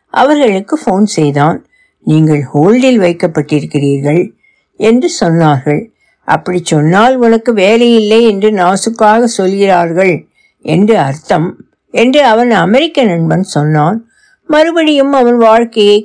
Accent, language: native, Tamil